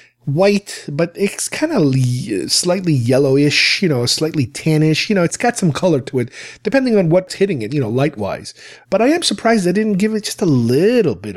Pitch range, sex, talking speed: 135-190 Hz, male, 210 wpm